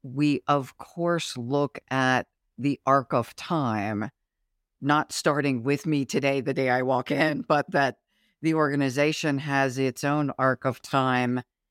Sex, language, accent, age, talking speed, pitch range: female, English, American, 50-69, 150 wpm, 120-140 Hz